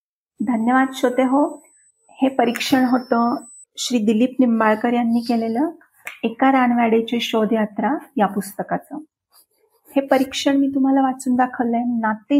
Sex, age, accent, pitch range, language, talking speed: female, 40-59, native, 220-260 Hz, Marathi, 115 wpm